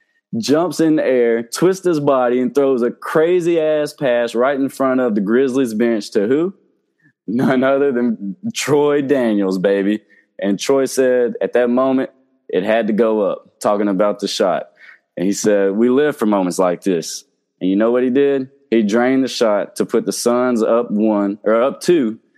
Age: 20-39